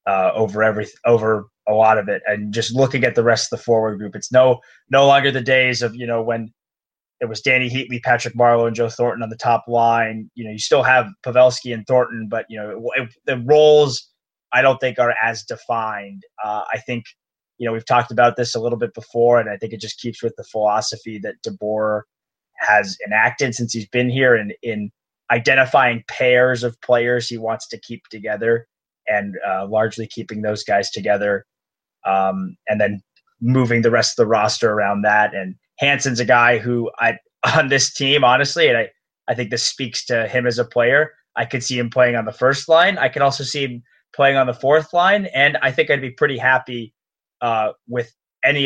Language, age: English, 20-39